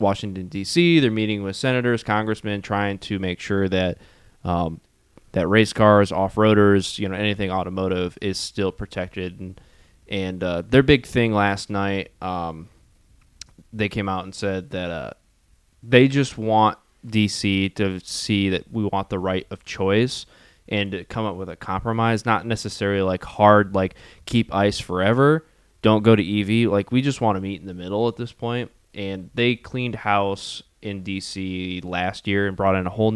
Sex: male